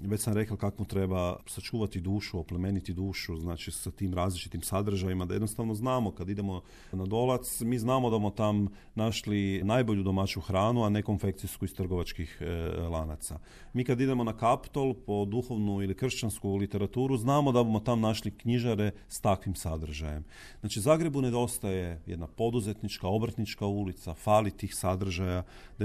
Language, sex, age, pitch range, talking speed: Croatian, male, 40-59, 95-120 Hz, 155 wpm